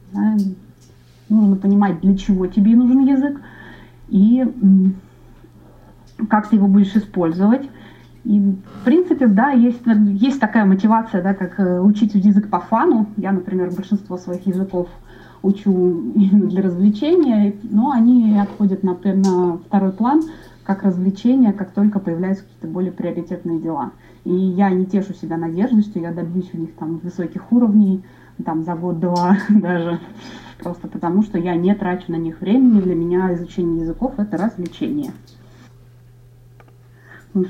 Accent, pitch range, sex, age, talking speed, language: native, 175-210 Hz, female, 20-39, 140 wpm, Russian